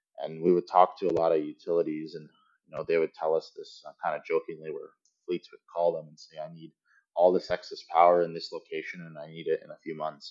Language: English